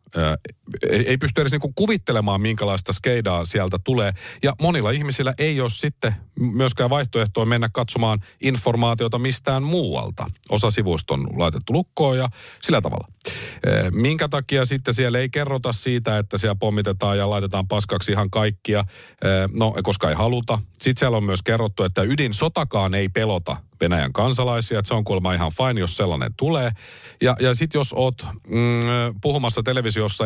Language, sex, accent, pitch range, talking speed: Finnish, male, native, 100-125 Hz, 155 wpm